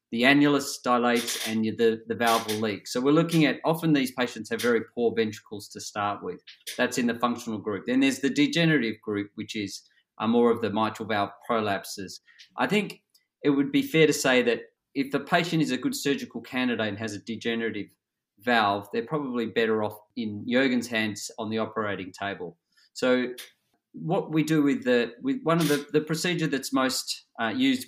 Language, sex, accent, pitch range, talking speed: English, male, Australian, 115-140 Hz, 195 wpm